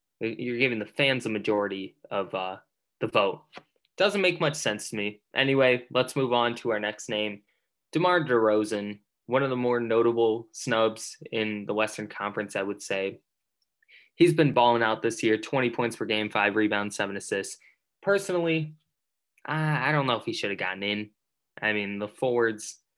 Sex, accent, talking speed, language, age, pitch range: male, American, 175 wpm, English, 20-39, 105-120 Hz